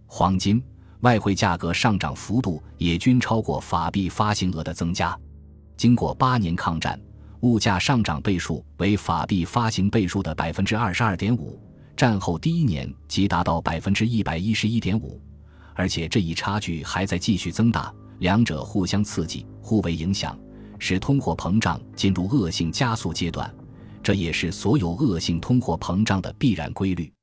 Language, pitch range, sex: Chinese, 85-110 Hz, male